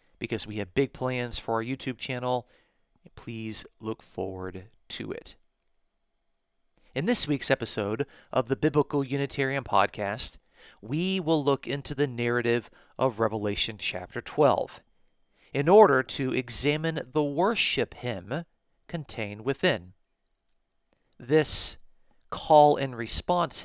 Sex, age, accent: male, 40-59, American